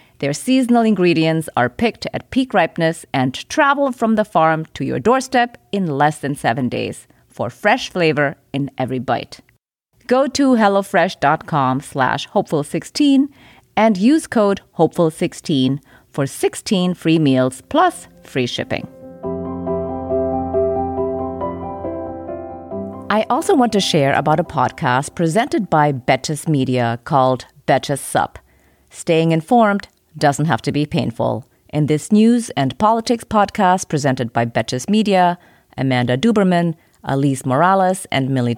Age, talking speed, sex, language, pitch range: 30-49, 125 wpm, female, English, 130-200 Hz